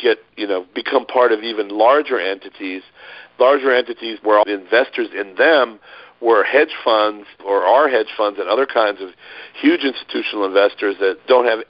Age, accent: 50-69, American